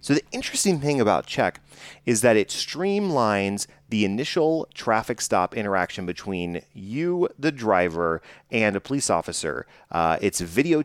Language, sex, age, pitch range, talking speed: English, male, 30-49, 90-120 Hz, 145 wpm